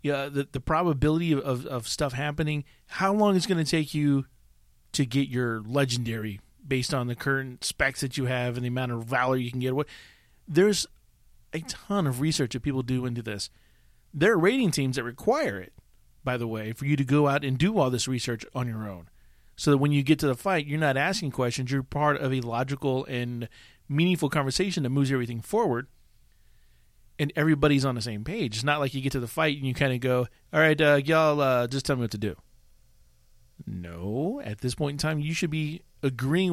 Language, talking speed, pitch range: English, 215 wpm, 120-150 Hz